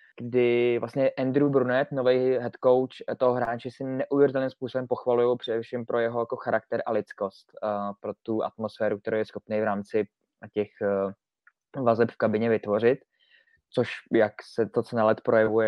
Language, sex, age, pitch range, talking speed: Czech, male, 20-39, 115-135 Hz, 155 wpm